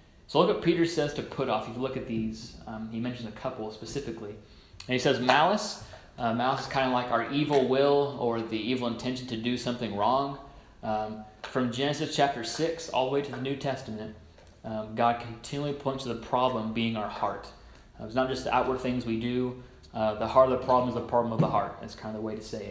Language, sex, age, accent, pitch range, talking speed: English, male, 30-49, American, 115-135 Hz, 240 wpm